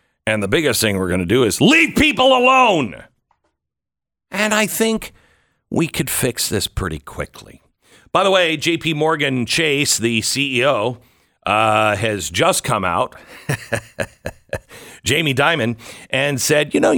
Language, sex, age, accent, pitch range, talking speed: English, male, 50-69, American, 110-155 Hz, 140 wpm